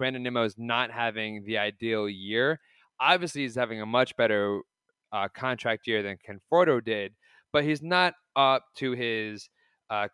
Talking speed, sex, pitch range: 160 wpm, male, 110-140 Hz